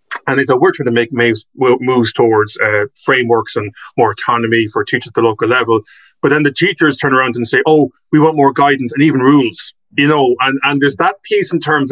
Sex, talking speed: male, 225 wpm